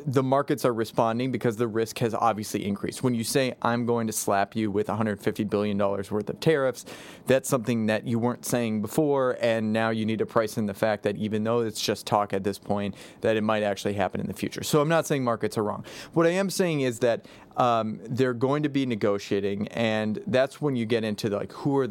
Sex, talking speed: male, 235 wpm